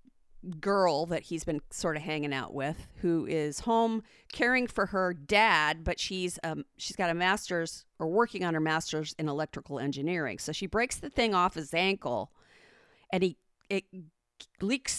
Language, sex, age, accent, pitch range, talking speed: English, female, 40-59, American, 160-225 Hz, 170 wpm